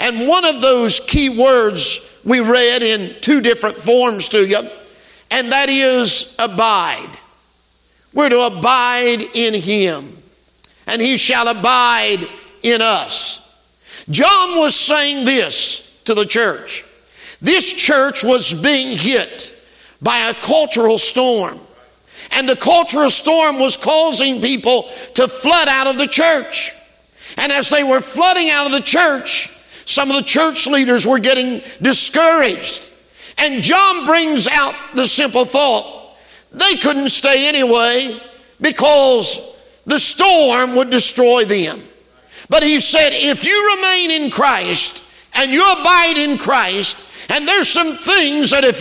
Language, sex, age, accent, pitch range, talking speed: English, male, 50-69, American, 235-305 Hz, 135 wpm